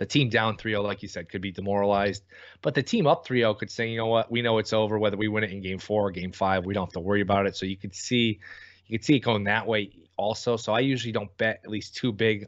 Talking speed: 300 wpm